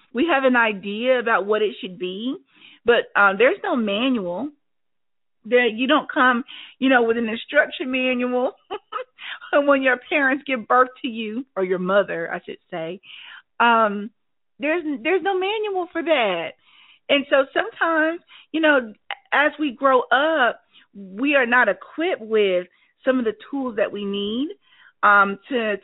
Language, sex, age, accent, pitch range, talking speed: English, female, 40-59, American, 210-285 Hz, 155 wpm